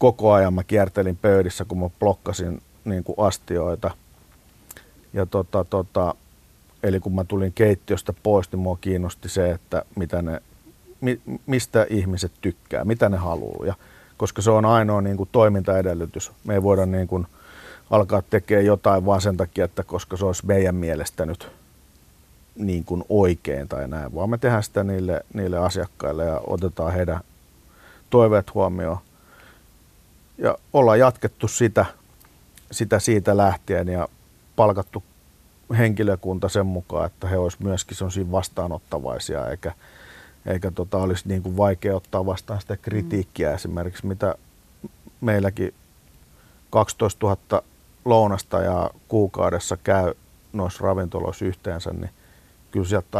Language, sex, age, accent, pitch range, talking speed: Finnish, male, 50-69, native, 90-105 Hz, 110 wpm